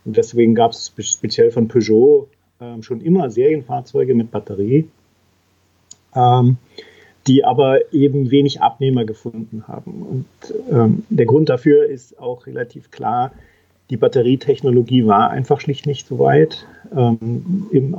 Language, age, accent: German, 40-59, German